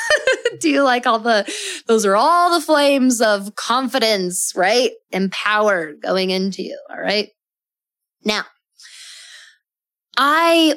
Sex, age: female, 20-39